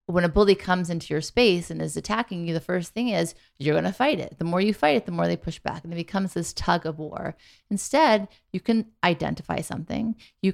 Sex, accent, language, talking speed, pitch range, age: female, American, English, 245 wpm, 165-205 Hz, 30-49